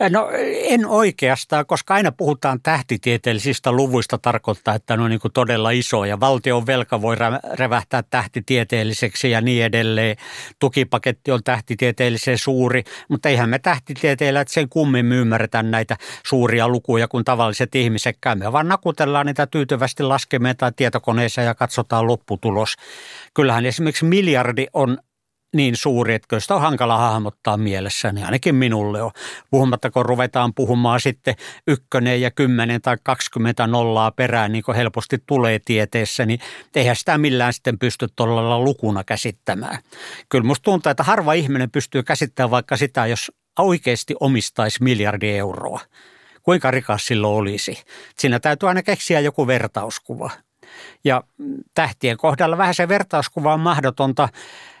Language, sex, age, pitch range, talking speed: Finnish, male, 60-79, 115-140 Hz, 135 wpm